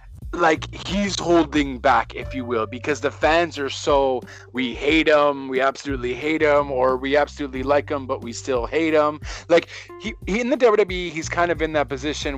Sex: male